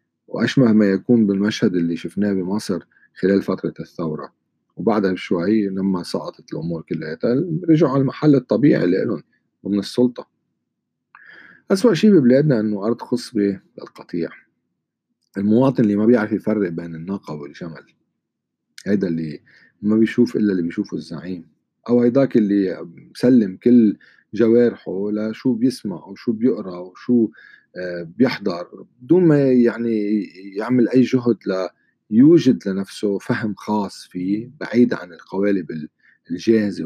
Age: 40-59